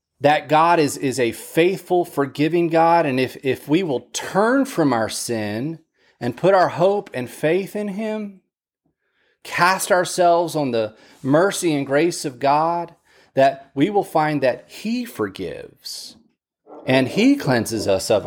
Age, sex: 30-49, male